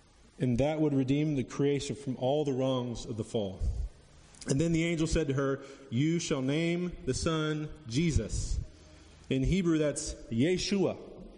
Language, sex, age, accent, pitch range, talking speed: English, male, 30-49, American, 130-170 Hz, 160 wpm